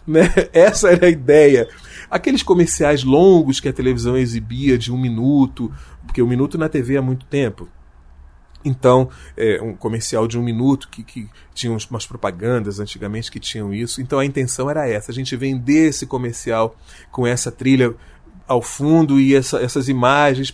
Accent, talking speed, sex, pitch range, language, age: Brazilian, 165 wpm, male, 120-150 Hz, Portuguese, 30-49